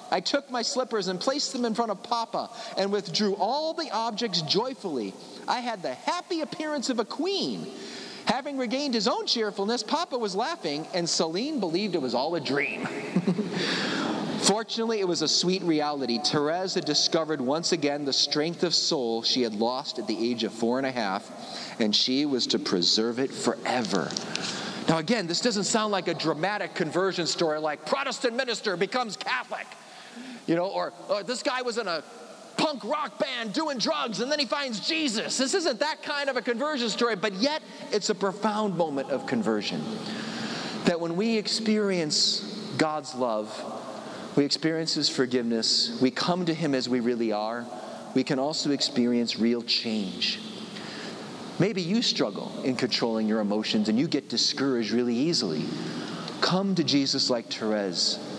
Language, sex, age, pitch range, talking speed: English, male, 40-59, 145-235 Hz, 170 wpm